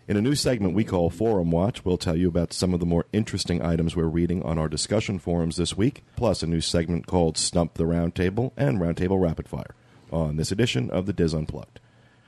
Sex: male